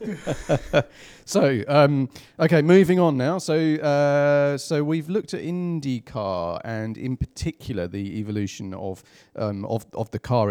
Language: English